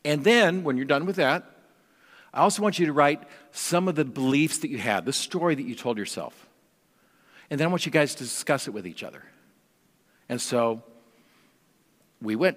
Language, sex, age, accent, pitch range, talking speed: English, male, 50-69, American, 120-165 Hz, 200 wpm